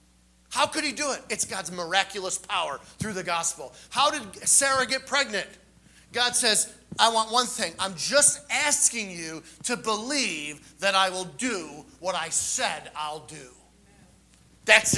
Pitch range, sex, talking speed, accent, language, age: 175-240 Hz, male, 155 wpm, American, English, 40-59